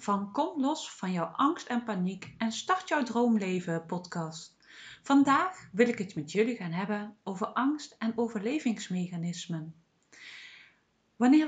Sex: female